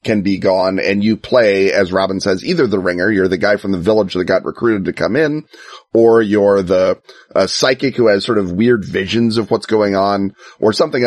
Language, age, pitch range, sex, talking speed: English, 30-49, 95-115 Hz, male, 220 wpm